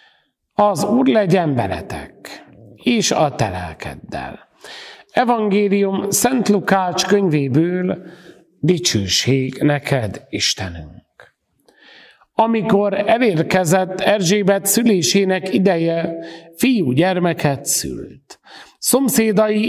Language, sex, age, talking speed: Hungarian, male, 50-69, 75 wpm